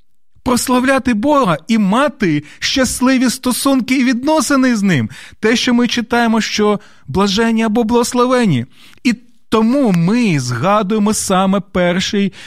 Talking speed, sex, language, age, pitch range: 115 wpm, male, Ukrainian, 30-49, 150-215 Hz